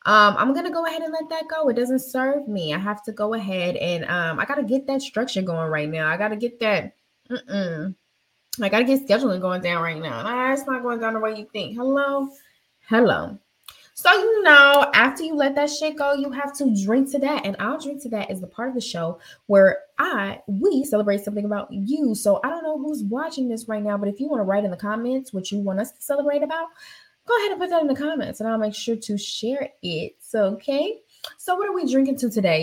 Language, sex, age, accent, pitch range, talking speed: English, female, 20-39, American, 195-280 Hz, 255 wpm